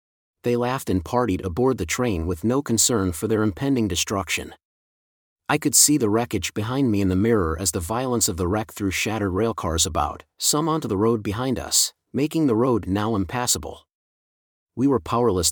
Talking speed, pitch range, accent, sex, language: 185 wpm, 95-125 Hz, American, male, English